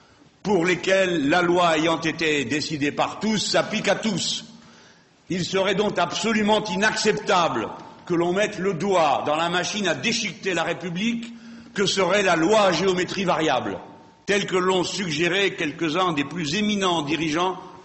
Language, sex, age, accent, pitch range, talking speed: French, male, 60-79, French, 160-205 Hz, 150 wpm